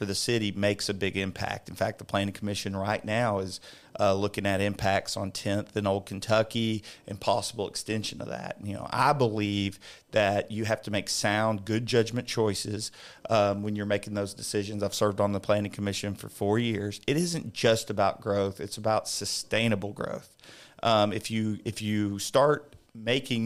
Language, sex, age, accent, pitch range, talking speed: English, male, 40-59, American, 100-115 Hz, 185 wpm